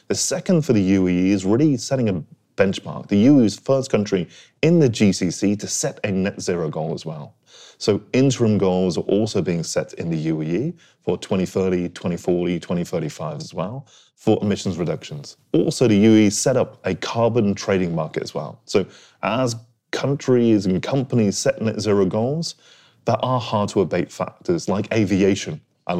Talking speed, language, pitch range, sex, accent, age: 175 wpm, English, 95-125 Hz, male, British, 30-49